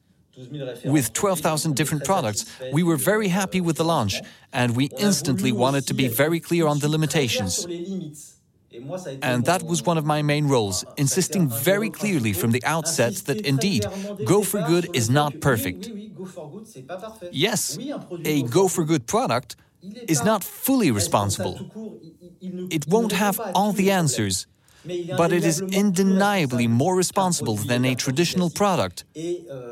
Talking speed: 140 wpm